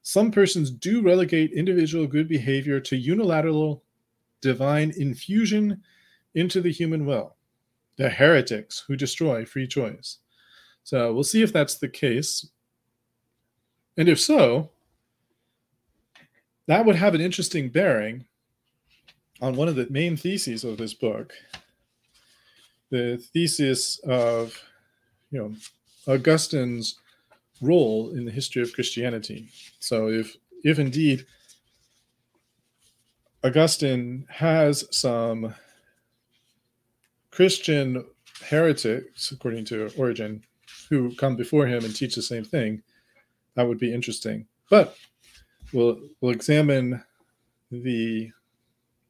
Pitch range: 120-155 Hz